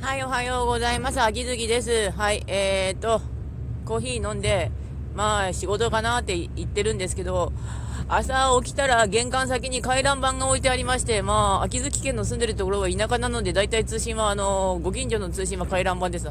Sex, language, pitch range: female, Japanese, 175-240 Hz